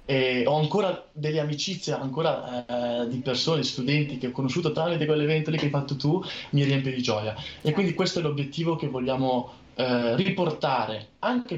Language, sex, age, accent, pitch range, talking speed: Italian, male, 20-39, native, 120-150 Hz, 170 wpm